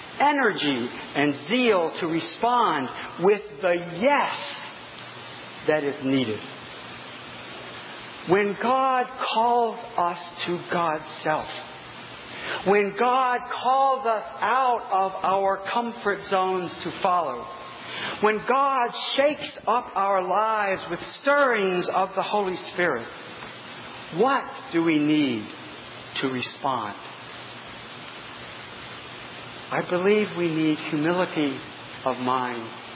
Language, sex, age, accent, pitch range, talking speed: English, male, 50-69, American, 180-245 Hz, 100 wpm